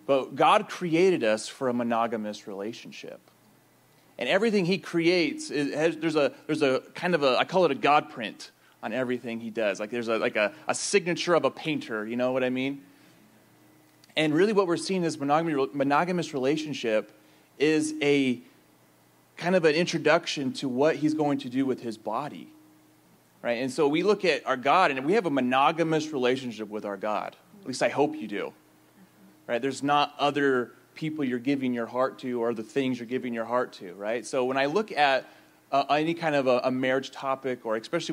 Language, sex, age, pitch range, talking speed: English, male, 30-49, 120-155 Hz, 195 wpm